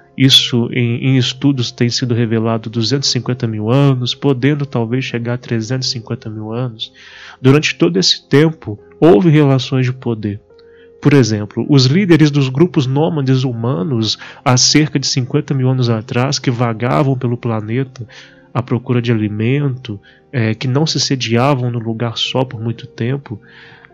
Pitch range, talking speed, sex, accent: 120-150 Hz, 145 wpm, male, Brazilian